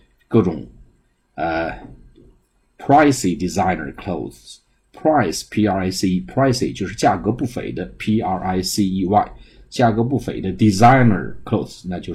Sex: male